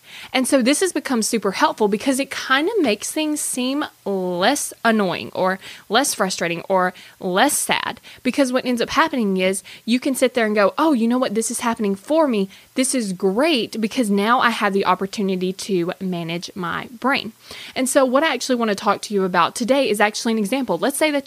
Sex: female